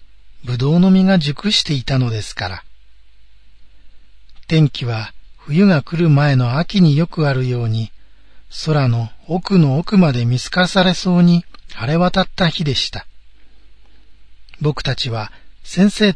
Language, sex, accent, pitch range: Japanese, male, native, 115-165 Hz